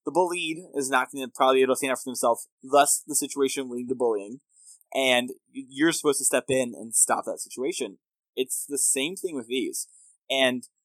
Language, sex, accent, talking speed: English, male, American, 210 wpm